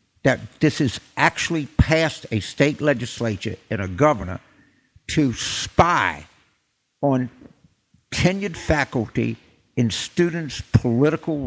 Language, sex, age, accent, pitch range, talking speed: English, male, 60-79, American, 115-155 Hz, 100 wpm